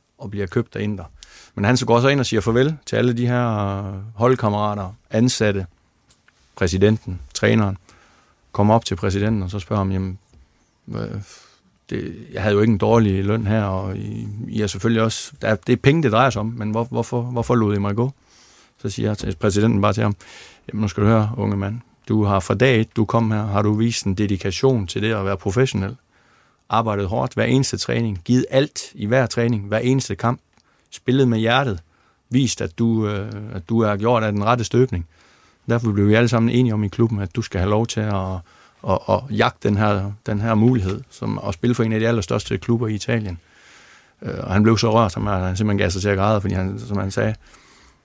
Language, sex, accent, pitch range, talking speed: Danish, male, native, 100-115 Hz, 215 wpm